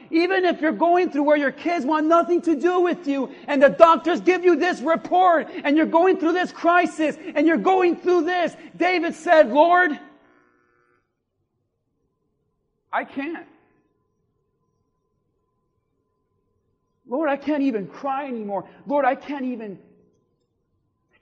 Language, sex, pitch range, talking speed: English, male, 210-310 Hz, 135 wpm